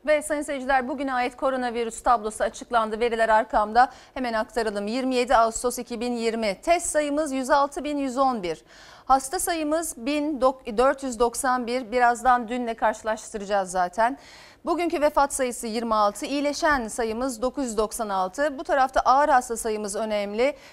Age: 40-59